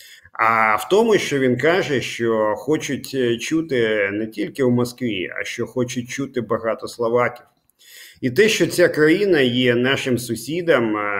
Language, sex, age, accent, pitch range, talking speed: Ukrainian, male, 50-69, native, 120-150 Hz, 145 wpm